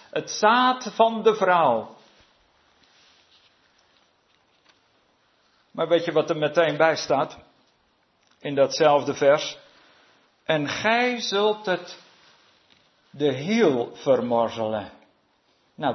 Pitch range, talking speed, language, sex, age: 140-180 Hz, 90 wpm, Dutch, male, 50-69